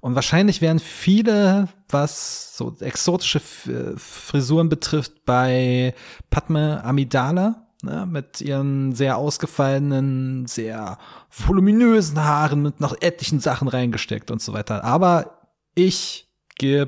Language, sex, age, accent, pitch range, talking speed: German, male, 30-49, German, 115-155 Hz, 115 wpm